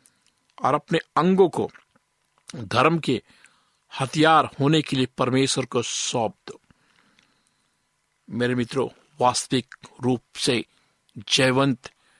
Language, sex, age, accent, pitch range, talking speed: Hindi, male, 50-69, native, 125-160 Hz, 100 wpm